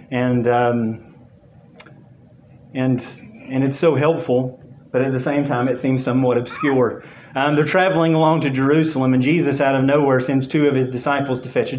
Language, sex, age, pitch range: English, male, 30-49, 130-150 Hz